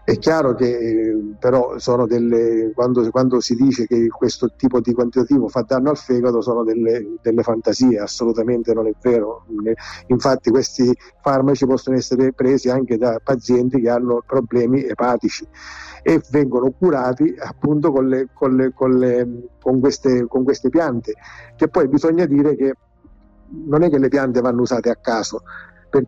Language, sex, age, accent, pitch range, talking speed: Italian, male, 50-69, native, 120-145 Hz, 150 wpm